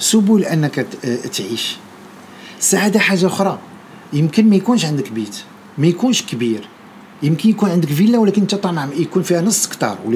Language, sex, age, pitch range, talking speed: Arabic, male, 50-69, 150-215 Hz, 150 wpm